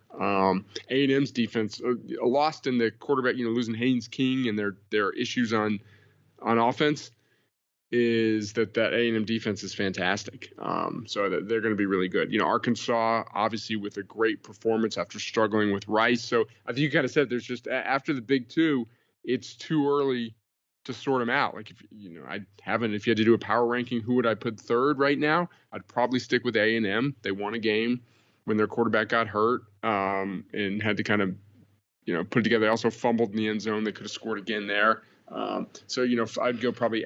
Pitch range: 105-125 Hz